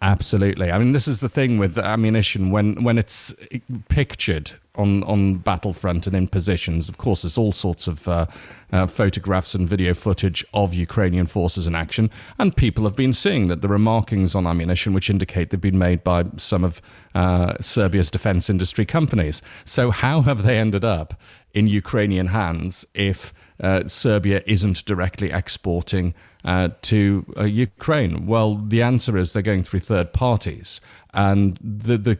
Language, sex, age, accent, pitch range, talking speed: English, male, 40-59, British, 90-105 Hz, 170 wpm